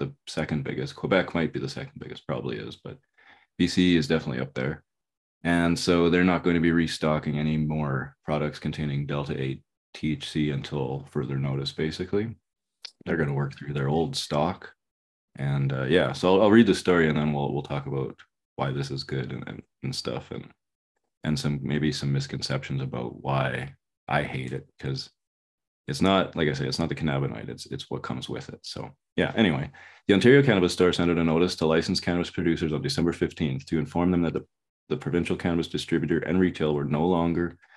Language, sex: English, male